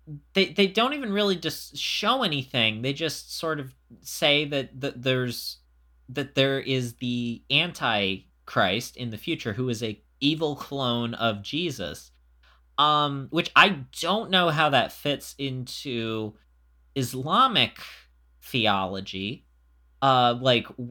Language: English